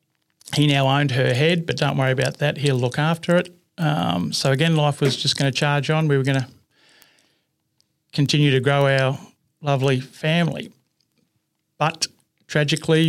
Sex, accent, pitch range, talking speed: male, Australian, 125-150 Hz, 165 wpm